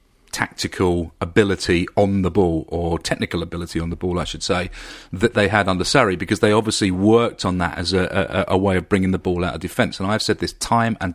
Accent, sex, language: British, male, English